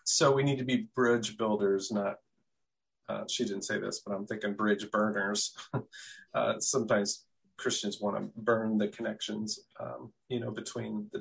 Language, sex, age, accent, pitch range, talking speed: English, male, 30-49, American, 110-140 Hz, 165 wpm